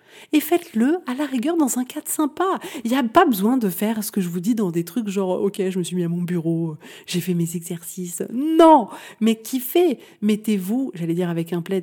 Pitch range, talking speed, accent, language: 185-240 Hz, 235 wpm, French, French